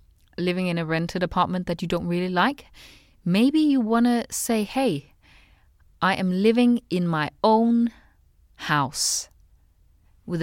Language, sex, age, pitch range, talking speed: English, female, 30-49, 150-215 Hz, 140 wpm